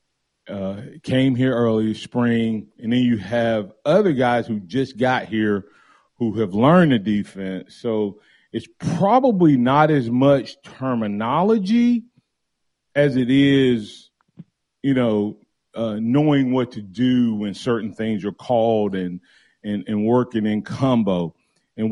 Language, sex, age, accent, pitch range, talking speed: English, male, 30-49, American, 110-135 Hz, 135 wpm